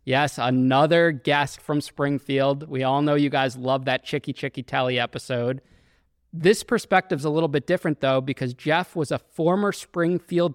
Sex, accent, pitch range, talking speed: male, American, 130-155 Hz, 170 wpm